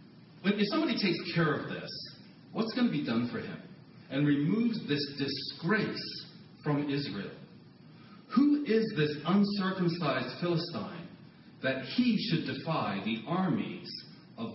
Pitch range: 140-190 Hz